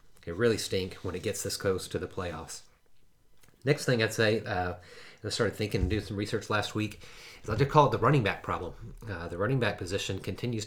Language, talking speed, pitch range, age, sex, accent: English, 225 wpm, 95-120 Hz, 30-49, male, American